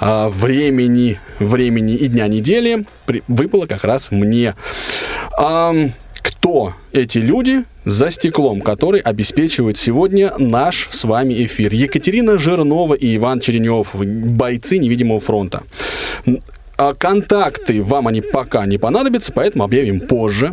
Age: 20-39